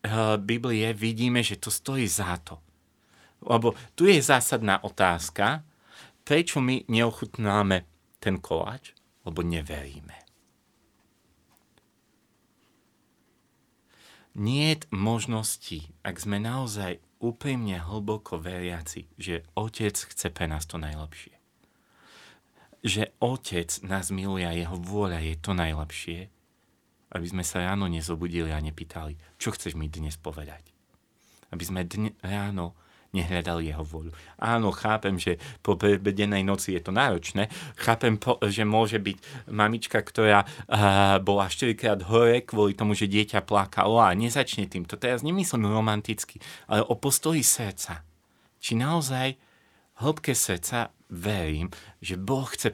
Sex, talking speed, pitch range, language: male, 120 wpm, 85-115 Hz, Slovak